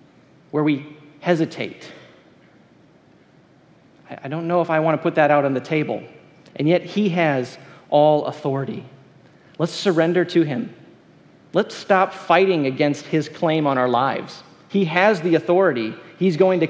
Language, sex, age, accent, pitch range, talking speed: English, male, 40-59, American, 135-170 Hz, 150 wpm